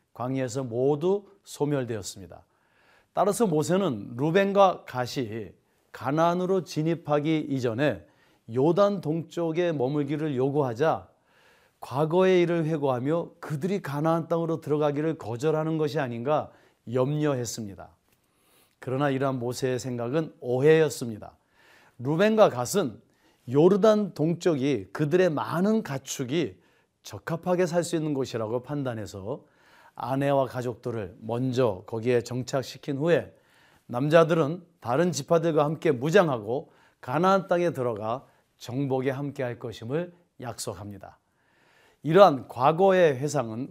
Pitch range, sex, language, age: 125-165 Hz, male, Korean, 30-49